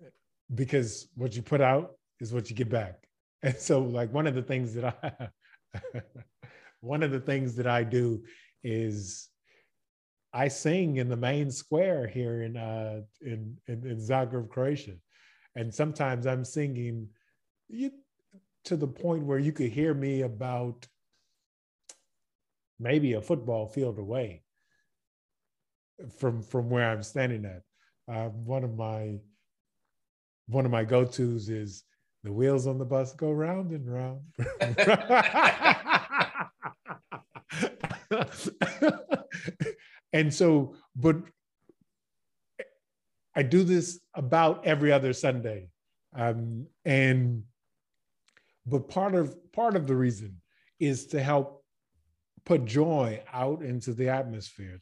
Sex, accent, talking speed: male, American, 120 wpm